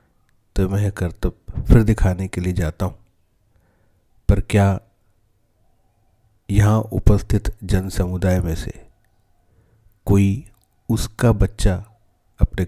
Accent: native